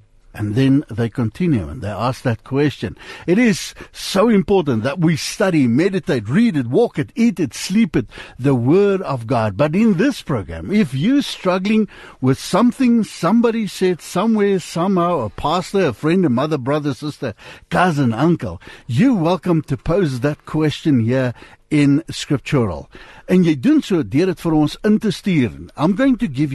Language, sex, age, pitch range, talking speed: English, male, 60-79, 130-195 Hz, 150 wpm